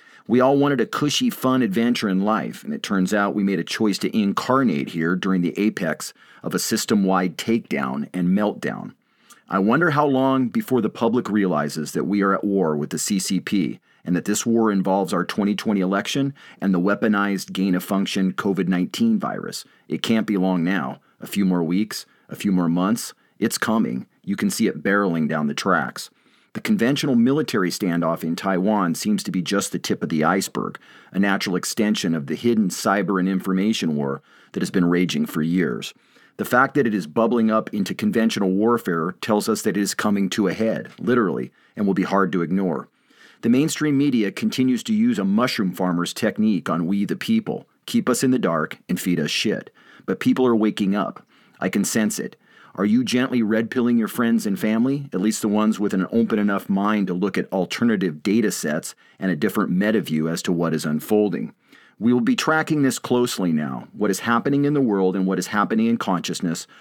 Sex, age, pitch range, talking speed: male, 40-59, 95-125 Hz, 200 wpm